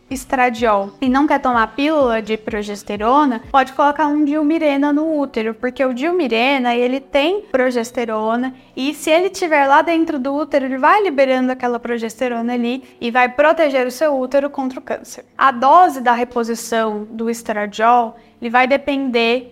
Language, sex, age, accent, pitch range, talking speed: Portuguese, female, 10-29, Brazilian, 235-300 Hz, 160 wpm